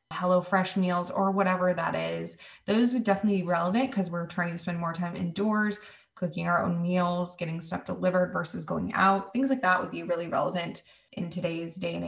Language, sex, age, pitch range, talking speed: English, female, 20-39, 175-205 Hz, 200 wpm